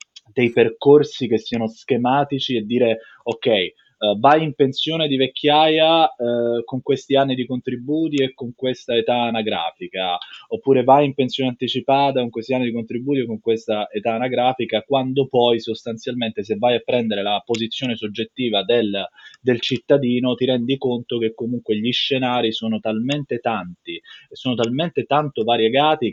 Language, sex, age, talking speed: Italian, male, 20-39, 155 wpm